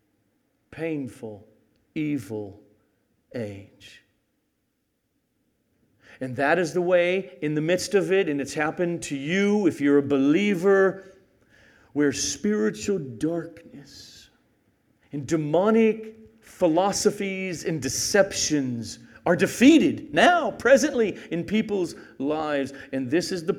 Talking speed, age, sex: 105 wpm, 50-69, male